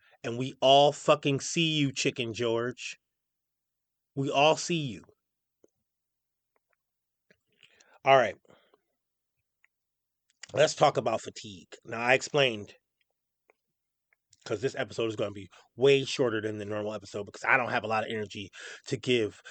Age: 30-49